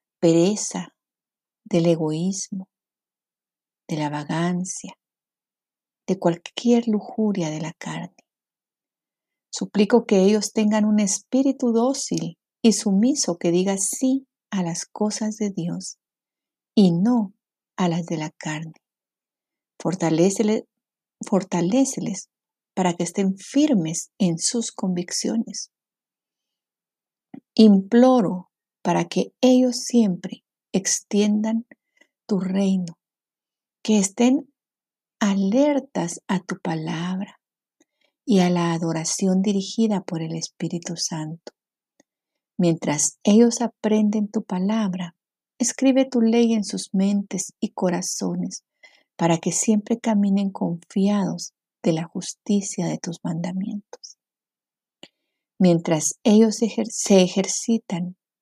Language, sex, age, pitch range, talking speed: Spanish, female, 50-69, 175-225 Hz, 100 wpm